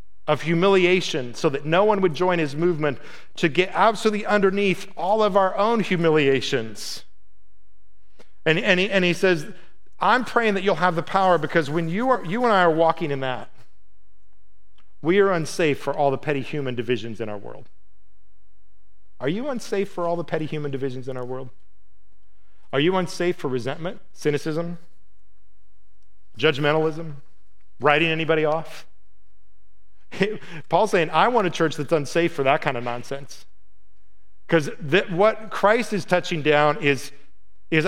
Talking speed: 155 wpm